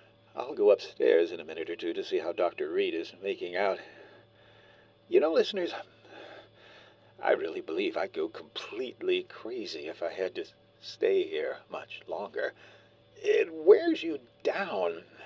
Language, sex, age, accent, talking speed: English, male, 60-79, American, 150 wpm